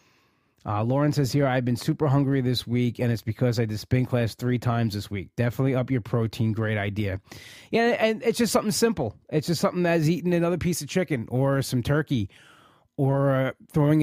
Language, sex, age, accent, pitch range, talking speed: English, male, 30-49, American, 120-155 Hz, 205 wpm